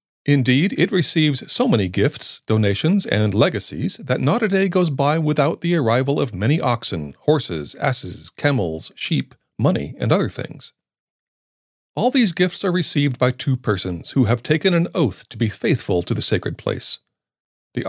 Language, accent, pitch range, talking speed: English, American, 105-160 Hz, 170 wpm